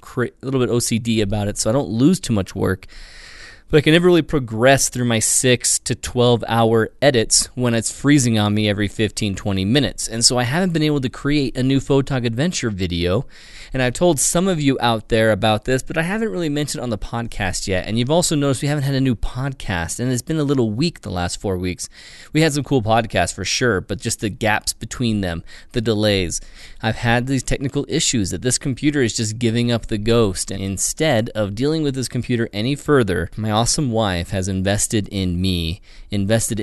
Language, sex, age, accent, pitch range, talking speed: English, male, 20-39, American, 100-130 Hz, 220 wpm